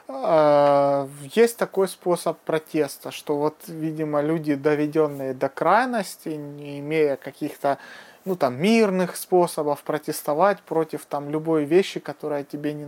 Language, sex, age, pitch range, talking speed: Russian, male, 30-49, 150-185 Hz, 110 wpm